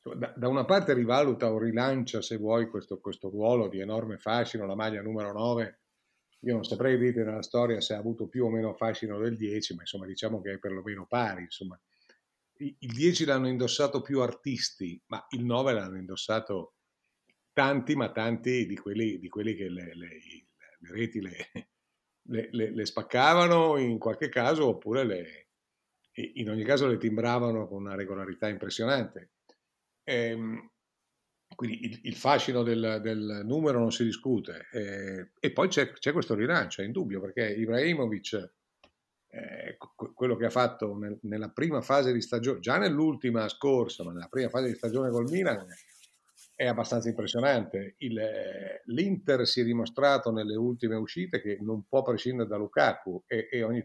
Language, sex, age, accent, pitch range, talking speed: Italian, male, 50-69, native, 105-125 Hz, 165 wpm